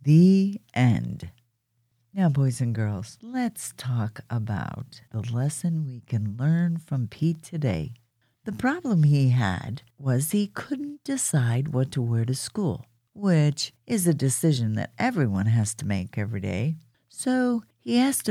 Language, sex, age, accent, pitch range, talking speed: English, female, 50-69, American, 120-175 Hz, 145 wpm